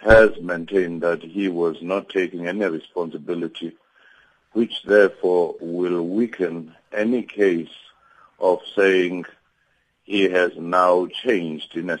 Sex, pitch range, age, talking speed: male, 85-95 Hz, 50-69, 115 wpm